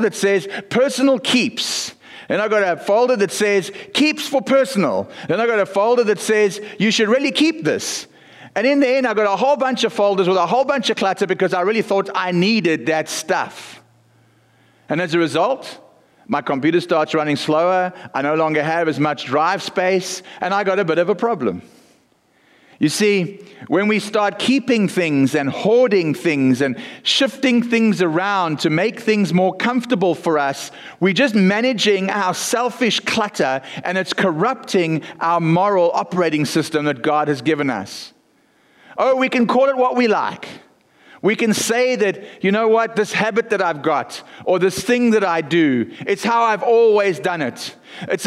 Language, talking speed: English, 185 wpm